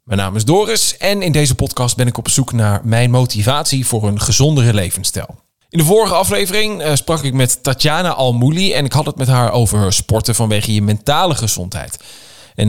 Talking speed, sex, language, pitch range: 195 wpm, male, Dutch, 110-145 Hz